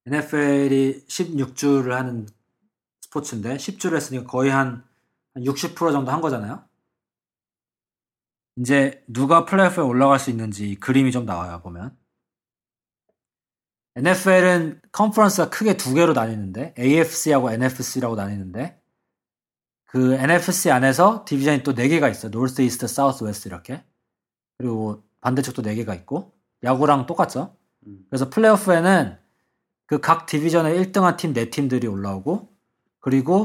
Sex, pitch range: male, 120-170 Hz